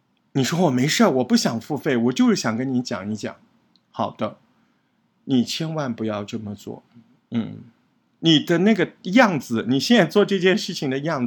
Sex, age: male, 50-69